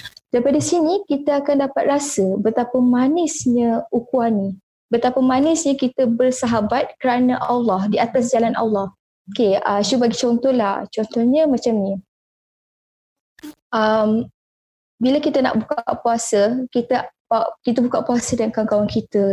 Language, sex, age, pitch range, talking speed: Malay, female, 20-39, 230-285 Hz, 125 wpm